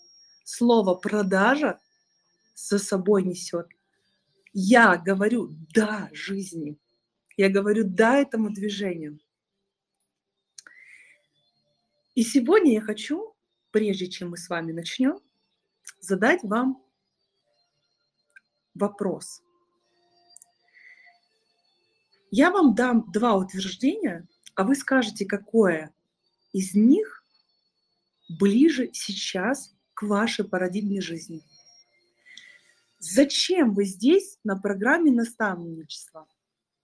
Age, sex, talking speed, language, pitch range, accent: 30-49, female, 80 wpm, Russian, 180-250 Hz, native